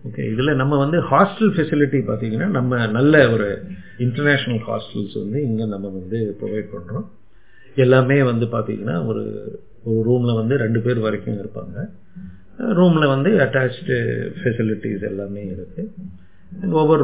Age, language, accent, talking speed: 50-69, Tamil, native, 120 wpm